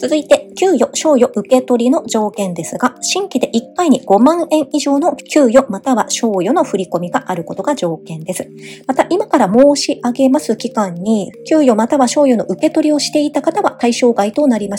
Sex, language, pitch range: male, Japanese, 205-280 Hz